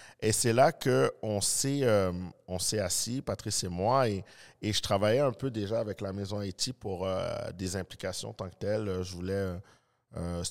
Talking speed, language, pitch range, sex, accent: 185 wpm, French, 85-105 Hz, male, Canadian